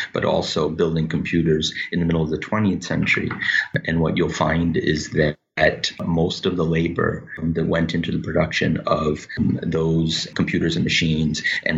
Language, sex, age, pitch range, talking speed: English, male, 30-49, 80-85 Hz, 175 wpm